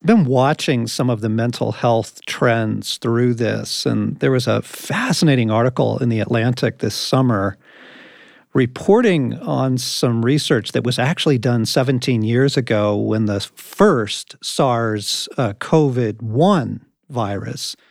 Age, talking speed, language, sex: 50-69, 130 wpm, English, male